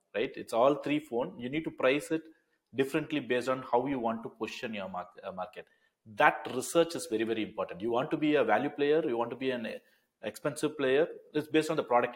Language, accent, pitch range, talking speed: English, Indian, 115-150 Hz, 225 wpm